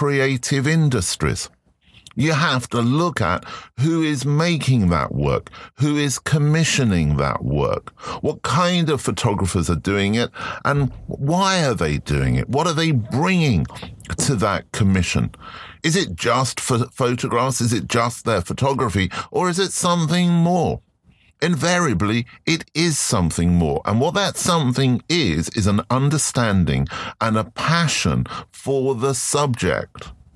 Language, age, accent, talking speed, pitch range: English, 50-69, British, 140 wpm, 115-150 Hz